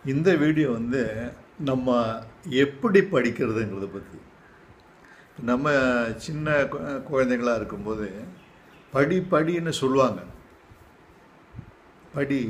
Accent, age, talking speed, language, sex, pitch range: native, 50-69, 70 wpm, Tamil, male, 115-150 Hz